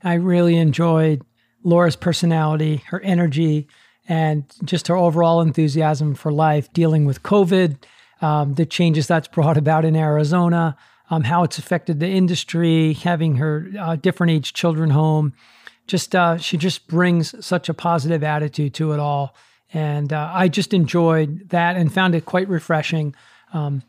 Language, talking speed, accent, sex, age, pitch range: English, 155 wpm, American, male, 40-59, 155-175 Hz